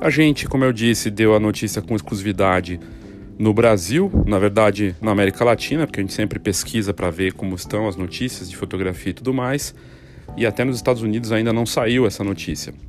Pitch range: 105-135 Hz